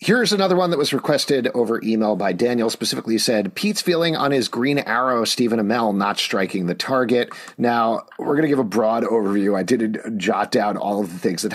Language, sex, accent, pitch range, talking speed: English, male, American, 105-140 Hz, 215 wpm